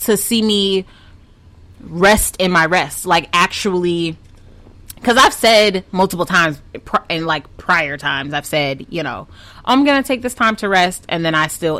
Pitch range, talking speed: 150-195 Hz, 175 wpm